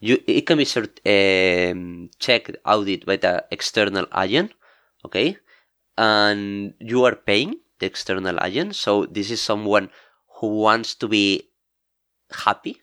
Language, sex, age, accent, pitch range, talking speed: English, male, 20-39, Spanish, 95-115 Hz, 135 wpm